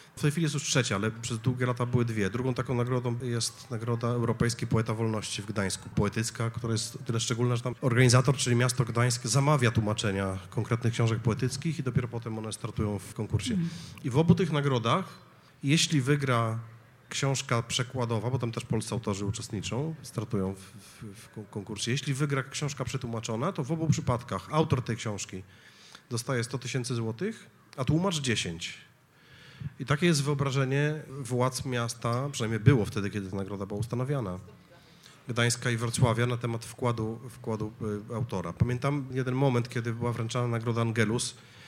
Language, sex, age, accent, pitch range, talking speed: Polish, male, 30-49, native, 115-135 Hz, 165 wpm